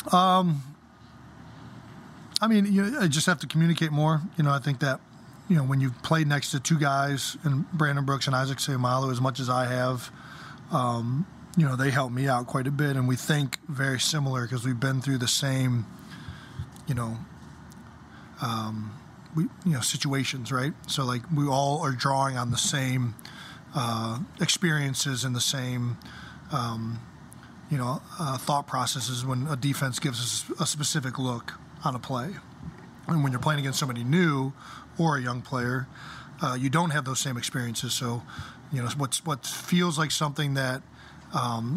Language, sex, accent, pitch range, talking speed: English, male, American, 125-150 Hz, 180 wpm